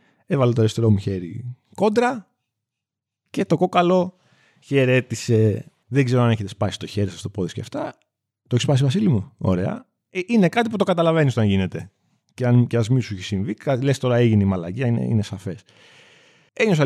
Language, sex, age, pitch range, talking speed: Greek, male, 30-49, 110-160 Hz, 190 wpm